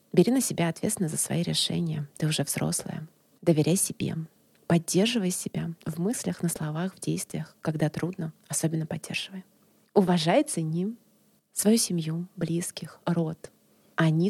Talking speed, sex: 130 wpm, female